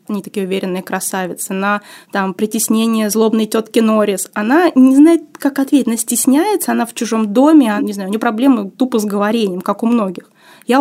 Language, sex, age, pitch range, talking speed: Russian, female, 20-39, 205-255 Hz, 185 wpm